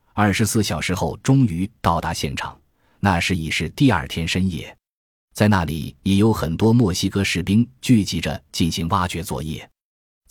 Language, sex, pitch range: Chinese, male, 85-115 Hz